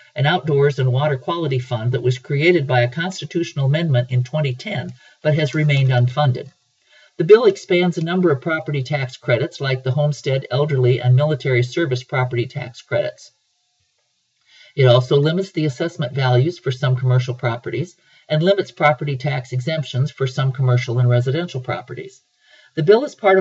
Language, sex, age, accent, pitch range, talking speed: English, male, 50-69, American, 125-160 Hz, 160 wpm